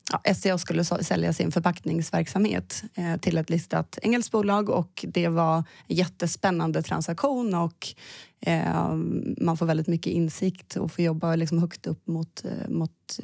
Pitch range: 165-185 Hz